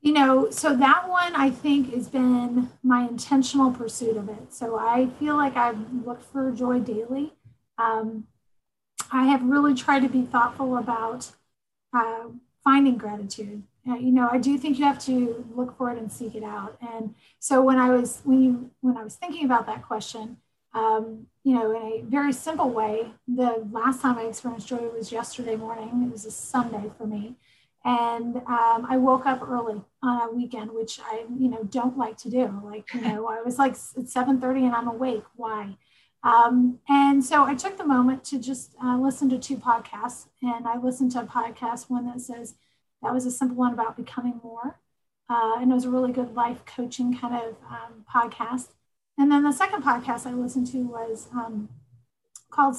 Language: English